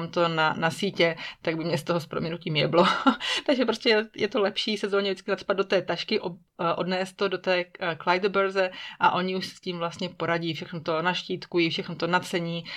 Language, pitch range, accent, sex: Czech, 165-180 Hz, native, female